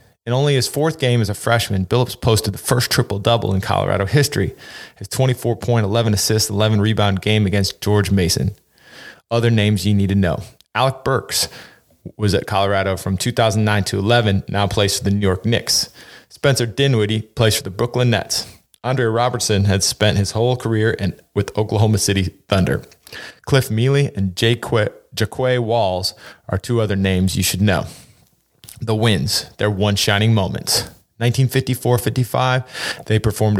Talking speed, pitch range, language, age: 160 wpm, 100-120 Hz, English, 20-39